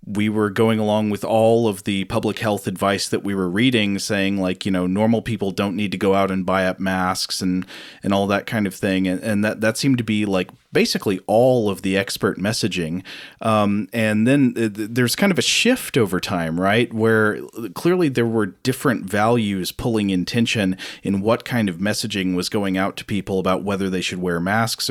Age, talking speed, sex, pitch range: 30-49, 215 wpm, male, 95-110 Hz